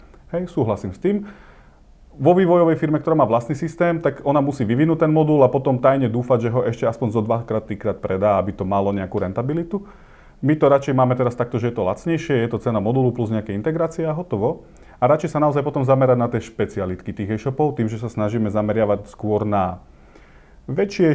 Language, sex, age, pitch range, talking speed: Slovak, male, 30-49, 105-135 Hz, 200 wpm